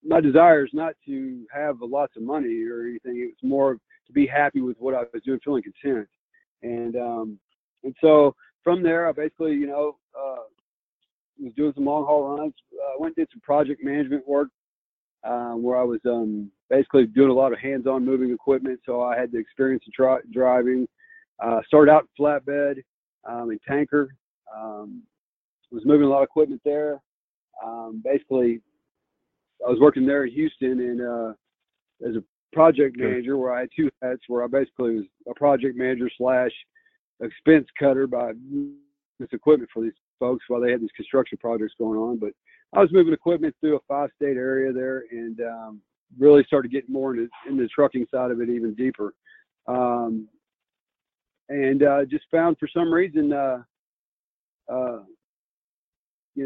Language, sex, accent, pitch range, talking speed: English, male, American, 120-150 Hz, 175 wpm